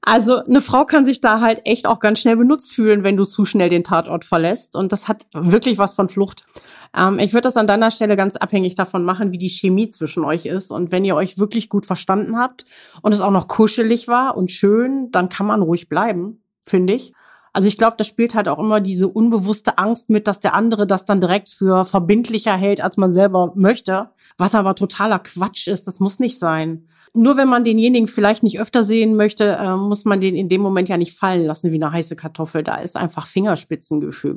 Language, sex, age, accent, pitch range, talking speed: German, female, 40-59, German, 180-225 Hz, 225 wpm